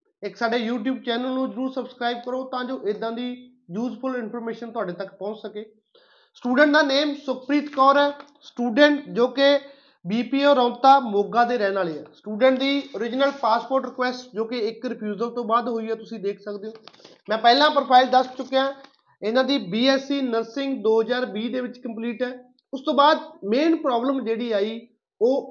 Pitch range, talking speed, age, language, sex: 220-275 Hz, 175 wpm, 30-49, Punjabi, male